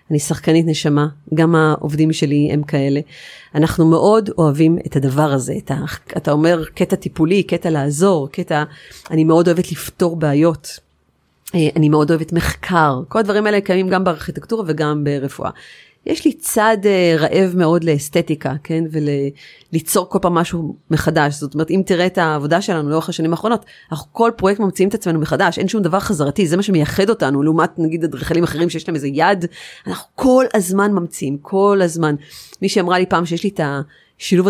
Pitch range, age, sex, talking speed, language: 150-185 Hz, 30-49, female, 170 wpm, Hebrew